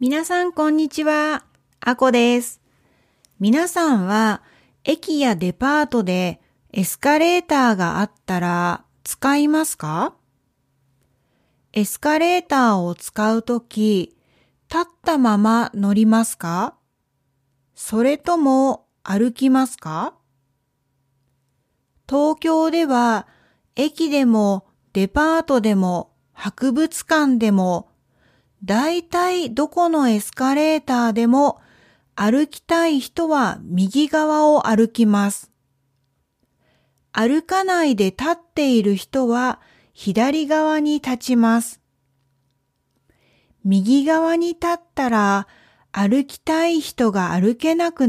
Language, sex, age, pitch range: Japanese, female, 40-59, 190-300 Hz